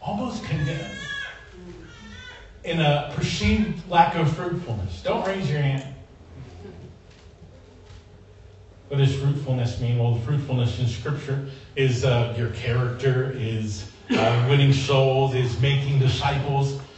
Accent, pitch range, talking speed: American, 105-155 Hz, 115 wpm